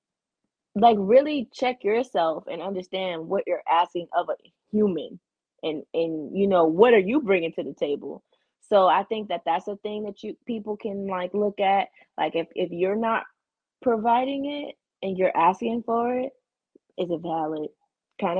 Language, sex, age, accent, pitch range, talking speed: English, female, 20-39, American, 180-245 Hz, 170 wpm